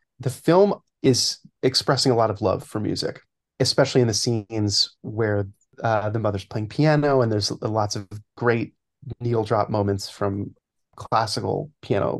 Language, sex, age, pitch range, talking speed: English, male, 30-49, 105-135 Hz, 150 wpm